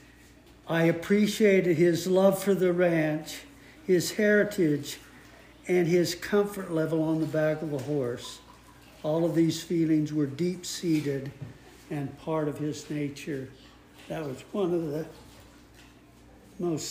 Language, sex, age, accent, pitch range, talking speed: English, male, 60-79, American, 150-175 Hz, 130 wpm